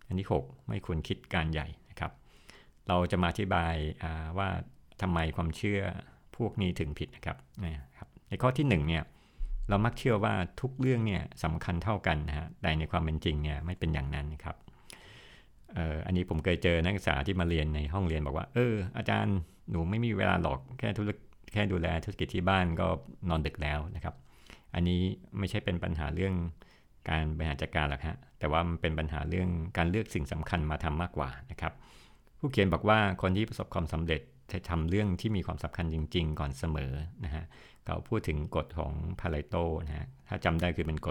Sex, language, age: male, Thai, 60-79